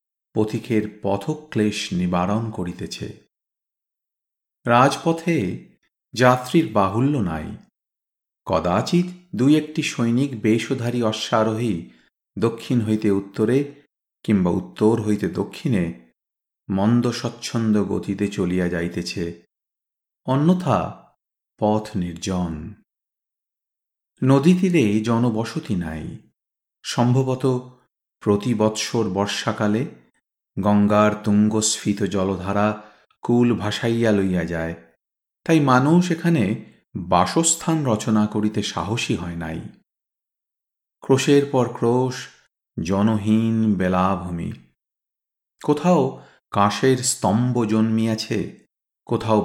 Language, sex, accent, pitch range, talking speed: Bengali, male, native, 100-125 Hz, 75 wpm